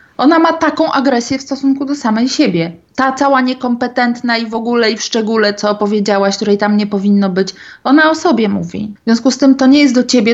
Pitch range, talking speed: 195-260 Hz, 220 wpm